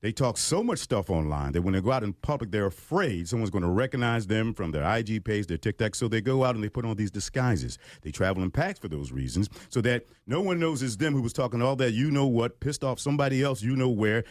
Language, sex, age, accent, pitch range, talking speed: English, male, 50-69, American, 105-135 Hz, 255 wpm